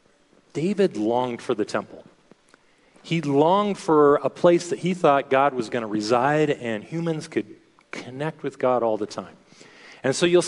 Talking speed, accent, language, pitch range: 170 wpm, American, English, 125-170 Hz